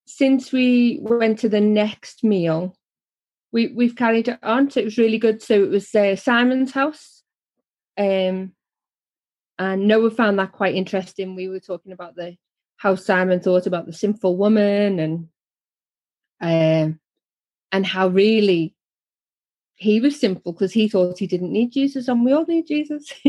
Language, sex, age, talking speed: English, female, 30-49, 160 wpm